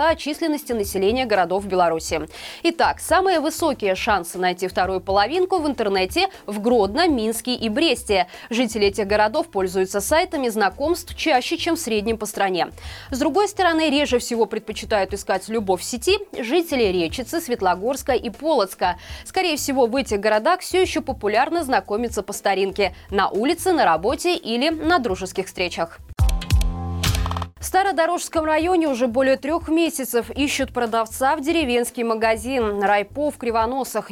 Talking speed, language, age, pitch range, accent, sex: 140 wpm, Russian, 20-39, 205-310 Hz, native, female